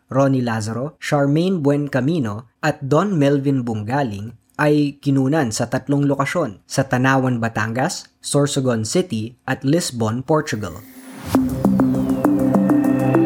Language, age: Filipino, 20-39